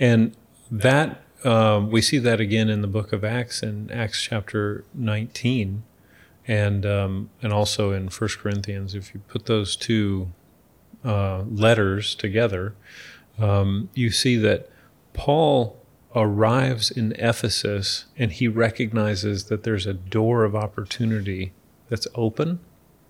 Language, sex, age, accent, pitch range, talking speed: English, male, 40-59, American, 100-120 Hz, 130 wpm